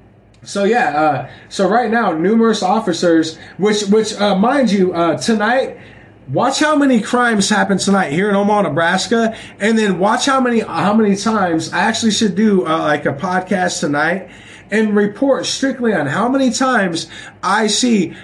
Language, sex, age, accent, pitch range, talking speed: English, male, 20-39, American, 155-225 Hz, 170 wpm